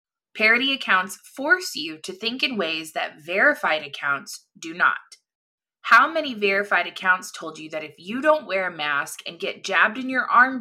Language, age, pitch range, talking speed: English, 20-39, 165-225 Hz, 180 wpm